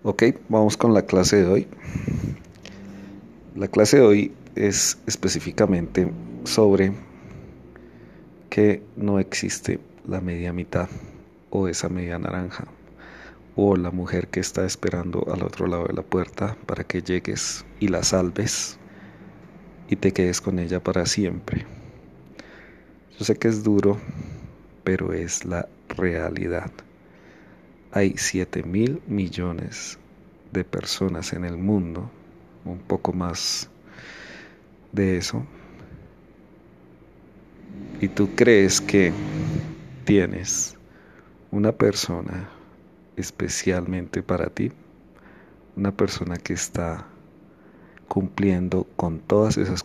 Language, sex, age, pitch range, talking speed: Spanish, male, 40-59, 90-100 Hz, 105 wpm